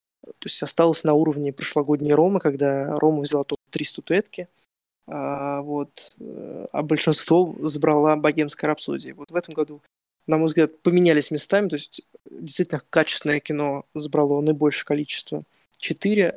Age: 20-39